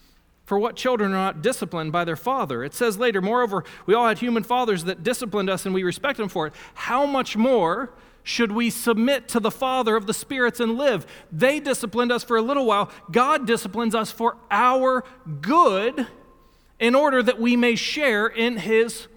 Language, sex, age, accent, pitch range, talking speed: English, male, 40-59, American, 180-275 Hz, 195 wpm